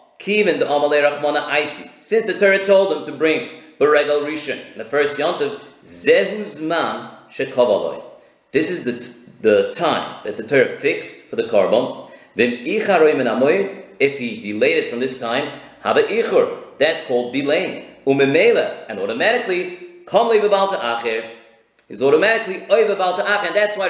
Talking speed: 135 wpm